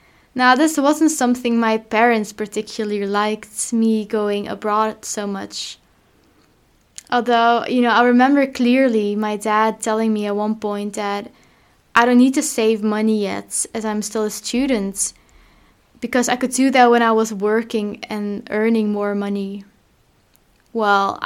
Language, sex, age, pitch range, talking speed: English, female, 10-29, 205-240 Hz, 150 wpm